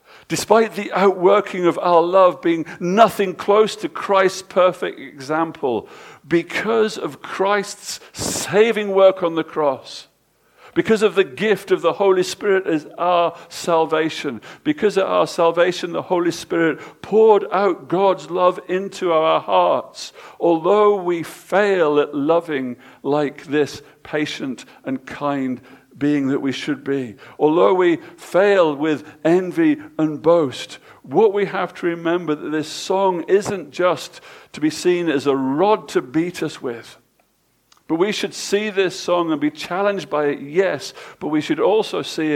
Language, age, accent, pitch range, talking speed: English, 50-69, British, 155-205 Hz, 150 wpm